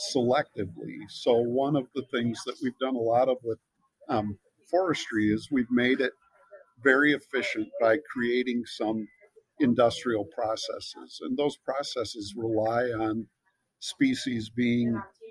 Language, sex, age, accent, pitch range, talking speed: English, male, 50-69, American, 115-155 Hz, 130 wpm